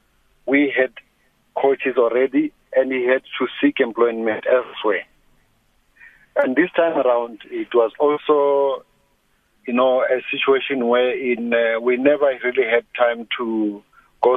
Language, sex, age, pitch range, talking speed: English, male, 50-69, 120-145 Hz, 135 wpm